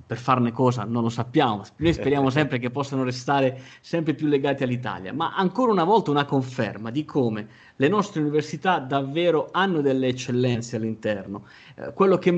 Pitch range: 125-150 Hz